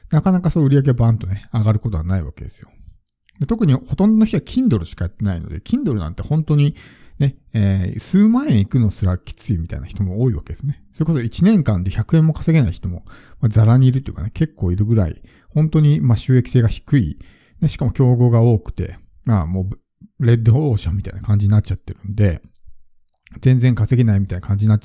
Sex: male